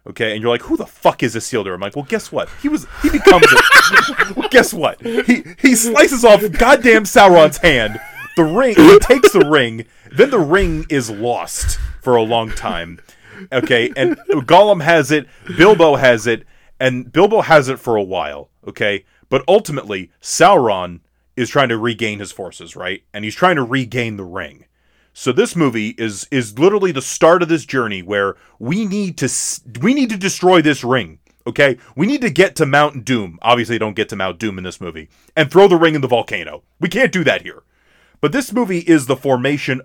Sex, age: male, 30-49